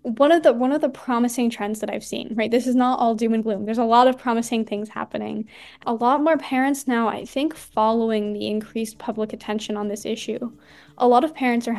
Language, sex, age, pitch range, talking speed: English, female, 10-29, 210-245 Hz, 235 wpm